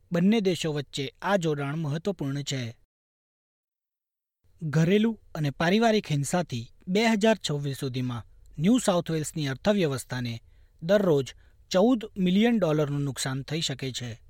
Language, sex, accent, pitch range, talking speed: Gujarati, male, native, 135-190 Hz, 105 wpm